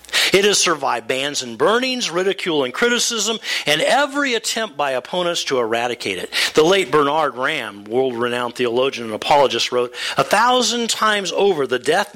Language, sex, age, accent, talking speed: English, male, 50-69, American, 160 wpm